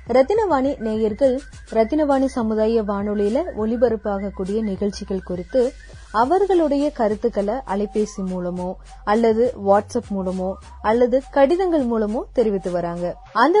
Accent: native